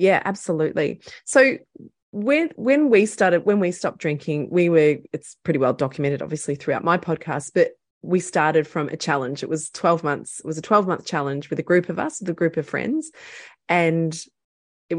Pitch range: 160-195 Hz